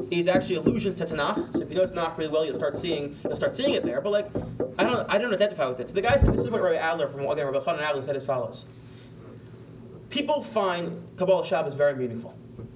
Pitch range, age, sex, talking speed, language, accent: 155-220 Hz, 30-49, male, 240 wpm, English, American